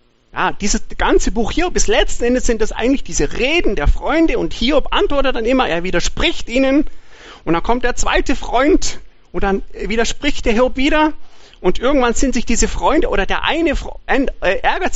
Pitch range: 180-275 Hz